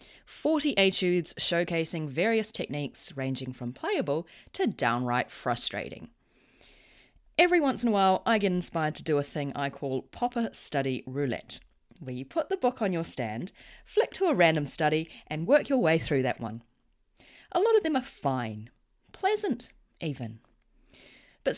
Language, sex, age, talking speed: English, female, 30-49, 160 wpm